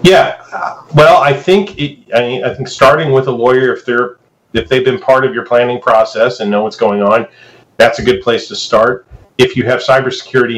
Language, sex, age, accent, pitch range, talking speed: English, male, 40-59, American, 110-135 Hz, 220 wpm